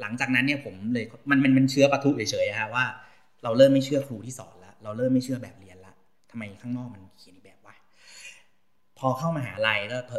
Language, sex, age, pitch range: Thai, male, 30-49, 110-140 Hz